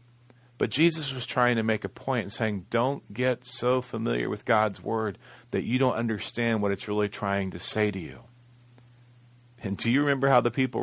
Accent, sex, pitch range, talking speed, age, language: American, male, 110-125 Hz, 200 wpm, 40-59, English